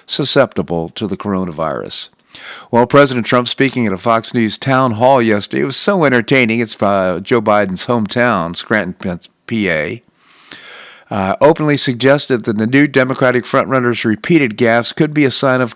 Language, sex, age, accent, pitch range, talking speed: English, male, 50-69, American, 105-130 Hz, 155 wpm